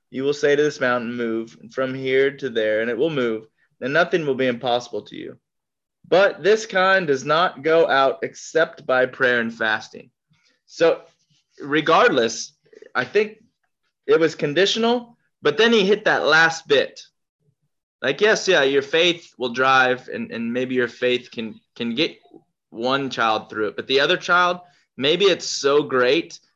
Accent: American